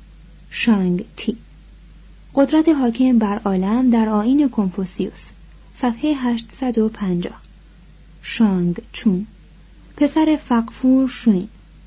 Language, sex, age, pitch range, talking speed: Persian, female, 30-49, 195-250 Hz, 80 wpm